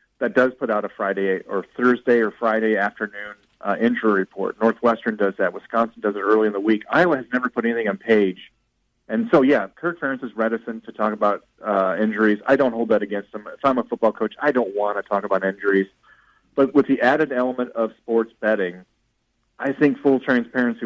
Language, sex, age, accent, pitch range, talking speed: English, male, 40-59, American, 105-125 Hz, 210 wpm